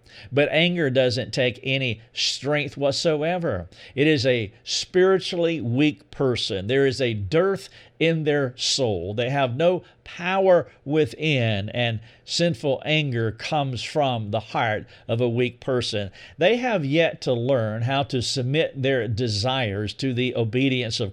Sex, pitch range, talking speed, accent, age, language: male, 115-145 Hz, 140 wpm, American, 50-69, English